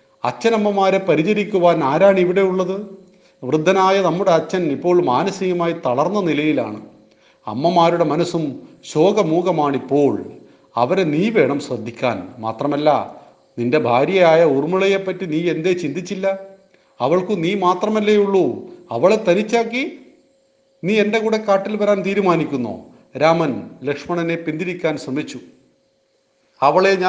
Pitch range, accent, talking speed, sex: 155-195 Hz, native, 60 wpm, male